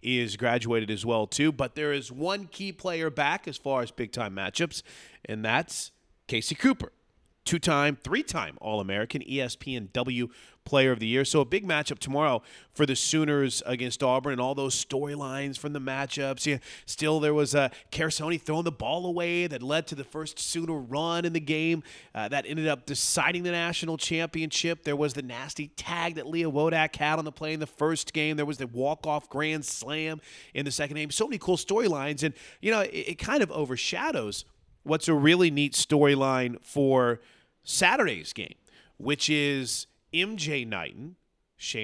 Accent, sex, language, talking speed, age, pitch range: American, male, English, 180 wpm, 30-49, 120-155 Hz